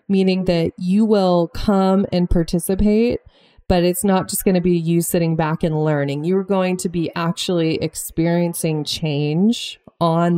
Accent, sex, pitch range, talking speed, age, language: American, female, 165-195 Hz, 155 wpm, 20-39, English